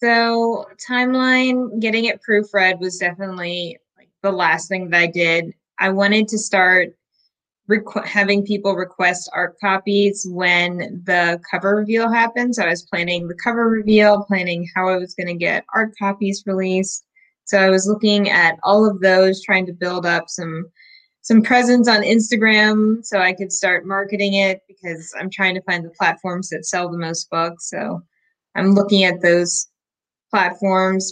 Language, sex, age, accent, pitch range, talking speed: English, female, 20-39, American, 175-200 Hz, 165 wpm